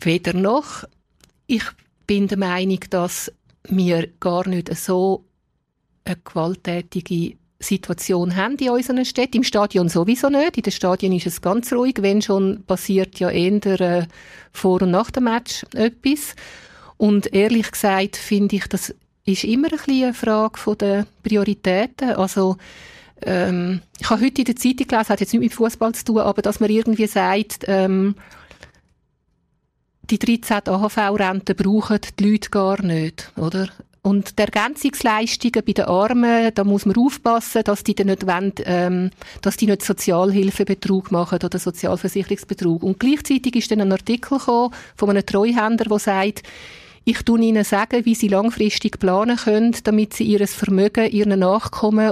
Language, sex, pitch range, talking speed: German, female, 190-225 Hz, 150 wpm